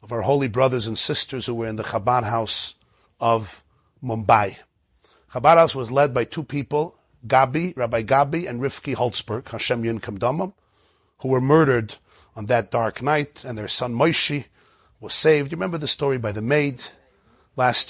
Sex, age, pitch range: male, 40-59, 115-145 Hz